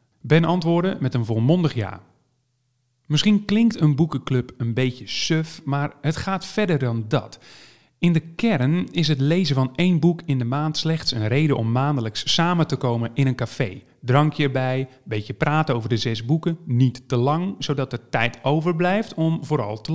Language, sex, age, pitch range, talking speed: Dutch, male, 40-59, 125-165 Hz, 185 wpm